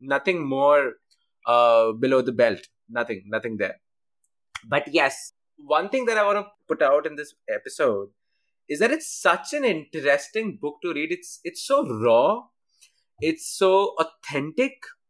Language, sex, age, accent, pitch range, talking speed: Hindi, male, 20-39, native, 145-220 Hz, 150 wpm